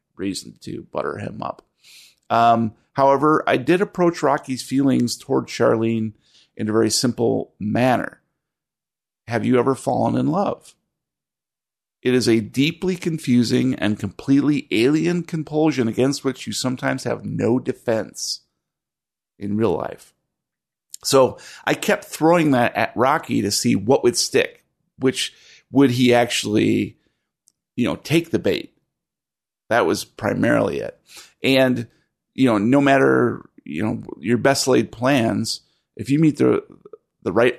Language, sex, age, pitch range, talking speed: English, male, 50-69, 110-155 Hz, 135 wpm